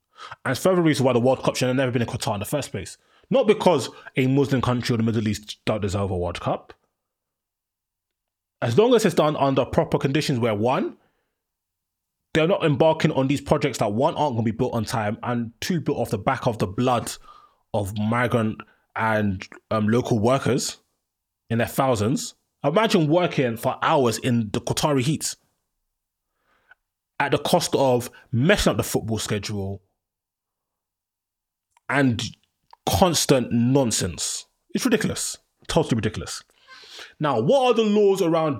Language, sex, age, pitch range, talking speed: English, male, 20-39, 115-155 Hz, 160 wpm